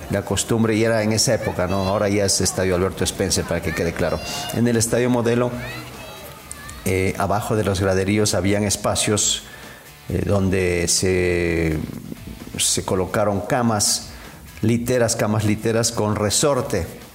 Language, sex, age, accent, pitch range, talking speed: English, male, 40-59, Mexican, 100-125 Hz, 140 wpm